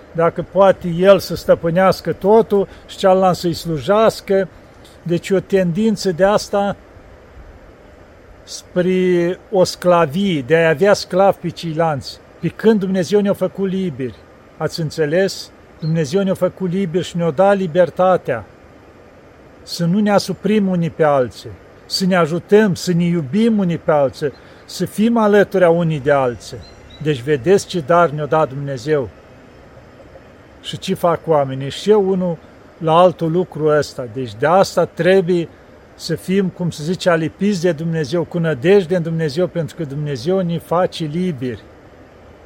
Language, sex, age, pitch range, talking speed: Romanian, male, 50-69, 150-185 Hz, 145 wpm